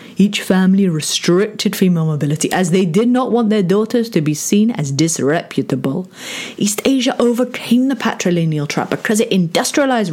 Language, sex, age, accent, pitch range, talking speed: English, female, 30-49, British, 175-250 Hz, 155 wpm